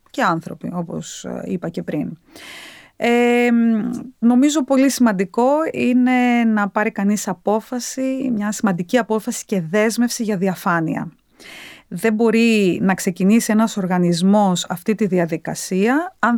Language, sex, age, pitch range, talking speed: Greek, female, 30-49, 195-250 Hz, 115 wpm